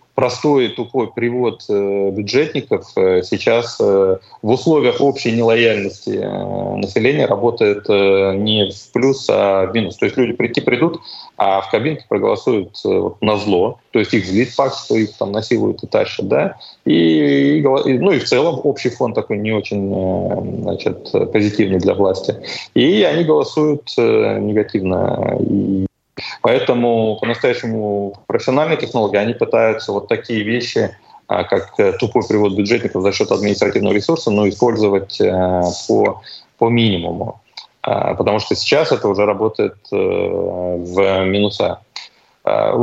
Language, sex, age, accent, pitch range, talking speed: Russian, male, 30-49, native, 100-135 Hz, 135 wpm